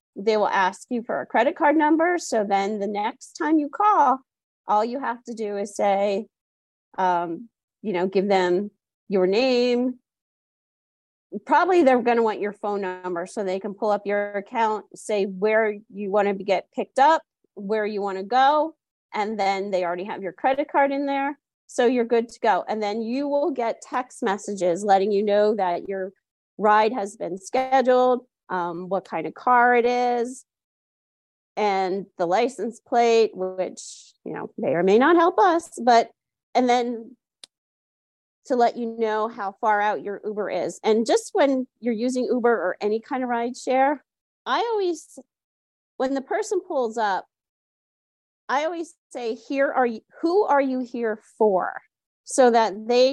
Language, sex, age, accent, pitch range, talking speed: English, female, 30-49, American, 200-260 Hz, 175 wpm